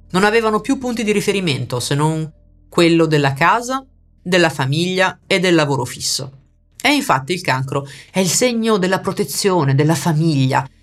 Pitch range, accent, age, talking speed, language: 135-180 Hz, native, 30-49, 155 wpm, Italian